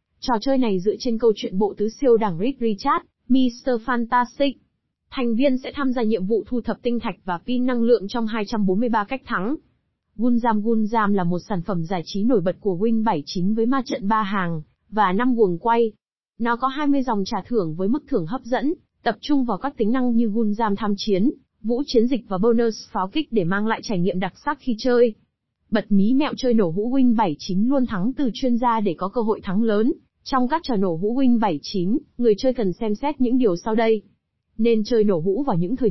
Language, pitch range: Vietnamese, 200-250 Hz